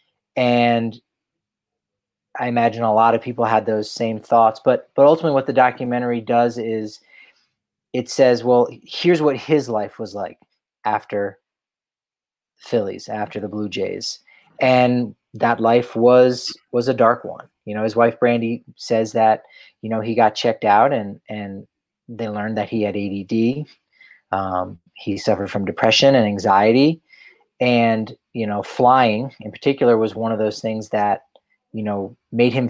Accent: American